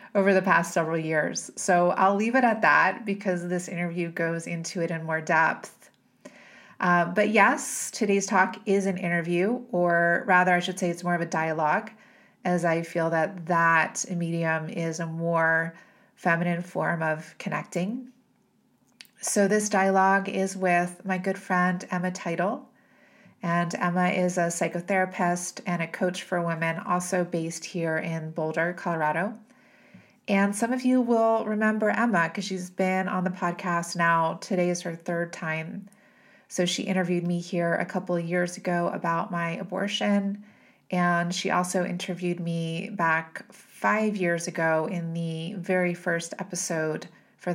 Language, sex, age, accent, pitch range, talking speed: English, female, 30-49, American, 170-200 Hz, 155 wpm